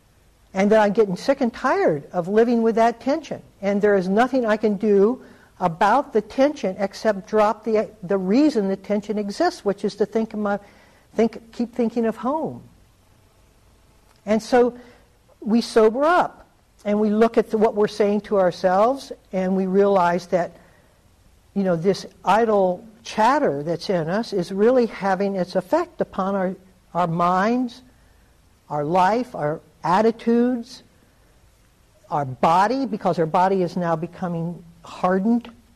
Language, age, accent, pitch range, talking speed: English, 60-79, American, 175-225 Hz, 150 wpm